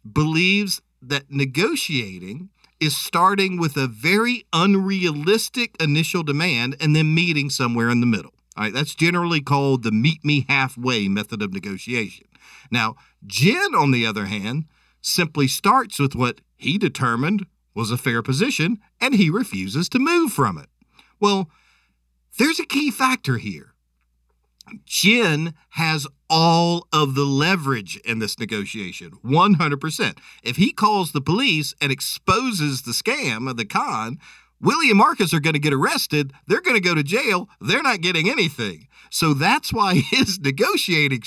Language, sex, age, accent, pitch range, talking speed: English, male, 50-69, American, 120-180 Hz, 145 wpm